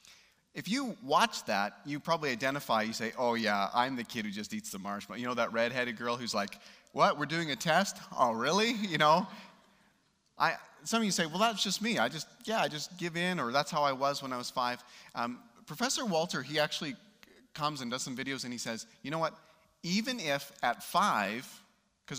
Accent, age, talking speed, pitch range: American, 30-49, 220 wpm, 115-195 Hz